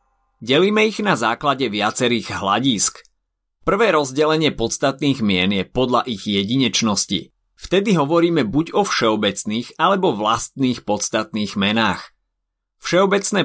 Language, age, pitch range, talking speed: Slovak, 30-49, 100-140 Hz, 105 wpm